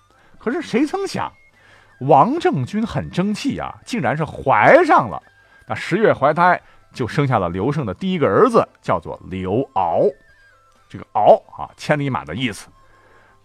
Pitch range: 100-170 Hz